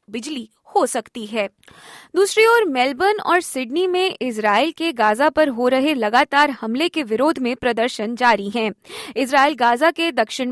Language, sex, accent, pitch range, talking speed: Hindi, female, native, 220-305 Hz, 165 wpm